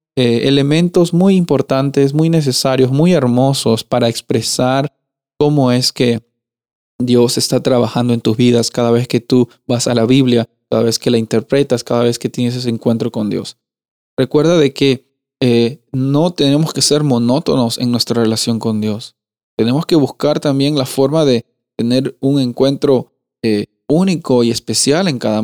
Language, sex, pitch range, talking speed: Spanish, male, 115-140 Hz, 165 wpm